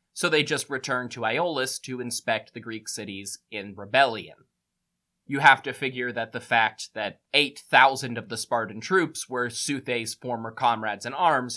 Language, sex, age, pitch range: English, male, 20-39, 115-155 Hz